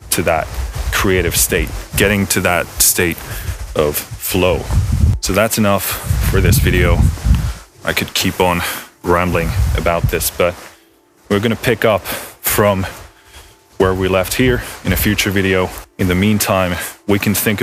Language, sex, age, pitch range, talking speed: English, male, 20-39, 85-100 Hz, 145 wpm